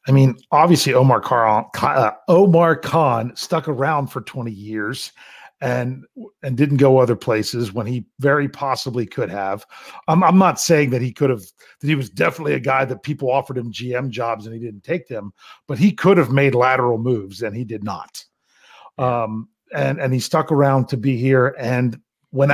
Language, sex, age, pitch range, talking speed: English, male, 40-59, 130-160 Hz, 190 wpm